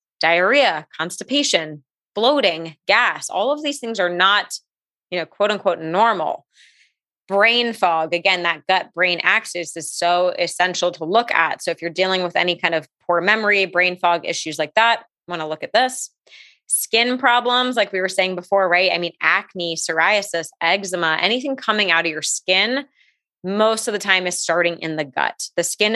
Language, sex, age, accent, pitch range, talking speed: English, female, 20-39, American, 175-220 Hz, 180 wpm